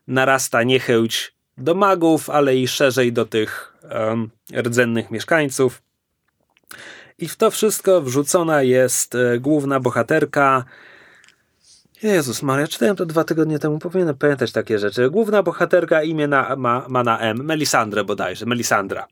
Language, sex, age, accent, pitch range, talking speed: Polish, male, 30-49, native, 115-150 Hz, 125 wpm